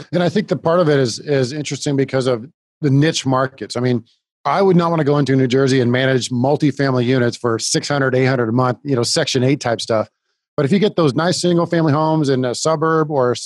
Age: 40-59